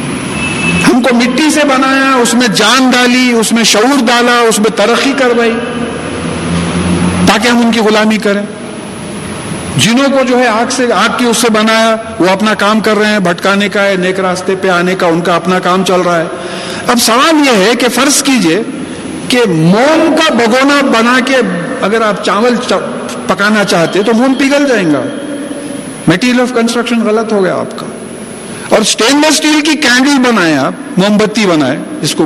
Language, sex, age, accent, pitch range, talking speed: English, male, 50-69, Indian, 205-275 Hz, 155 wpm